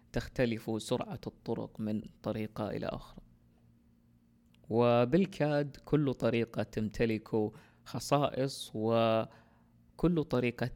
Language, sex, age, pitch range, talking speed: Arabic, female, 20-39, 110-130 Hz, 80 wpm